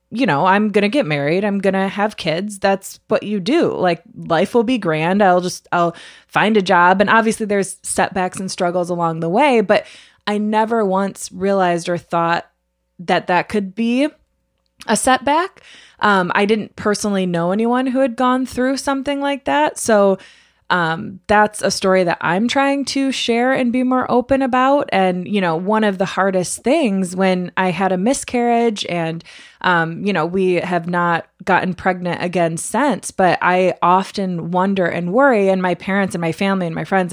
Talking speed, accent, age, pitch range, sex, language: 185 wpm, American, 20-39, 175-225 Hz, female, English